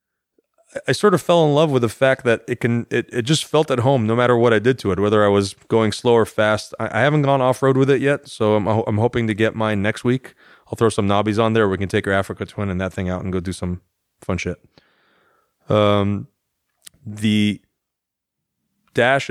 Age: 30-49